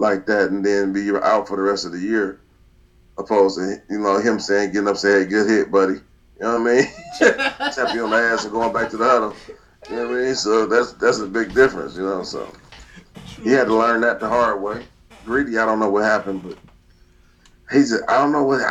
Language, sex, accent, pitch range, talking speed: English, male, American, 100-120 Hz, 235 wpm